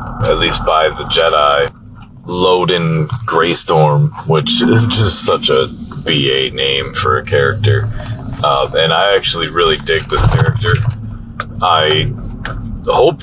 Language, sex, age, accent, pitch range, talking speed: English, male, 30-49, American, 95-125 Hz, 120 wpm